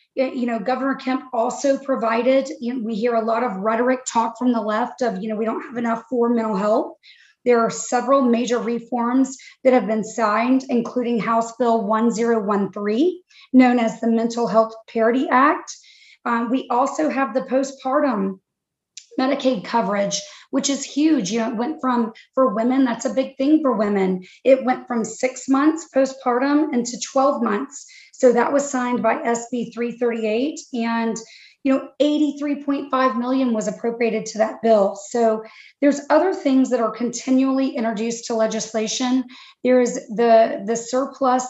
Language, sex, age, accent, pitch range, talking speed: English, female, 30-49, American, 225-265 Hz, 165 wpm